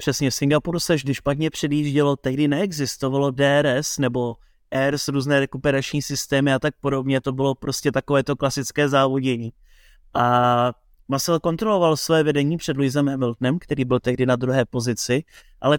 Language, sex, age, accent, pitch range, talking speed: Czech, male, 30-49, native, 140-160 Hz, 150 wpm